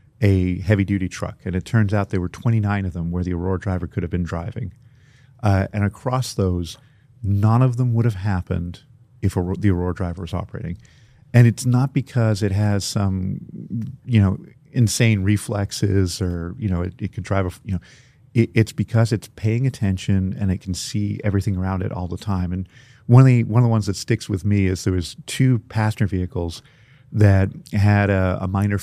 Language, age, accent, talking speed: English, 50-69, American, 200 wpm